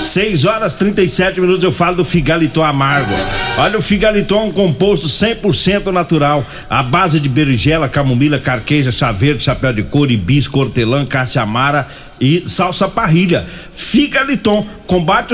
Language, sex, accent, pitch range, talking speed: Portuguese, male, Brazilian, 145-185 Hz, 135 wpm